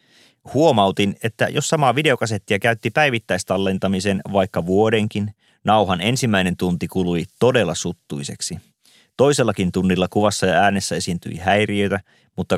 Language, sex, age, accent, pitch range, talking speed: Finnish, male, 30-49, native, 95-115 Hz, 110 wpm